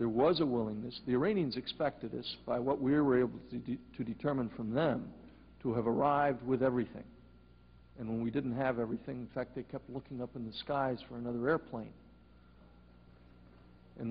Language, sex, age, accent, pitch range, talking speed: English, male, 60-79, American, 115-140 Hz, 180 wpm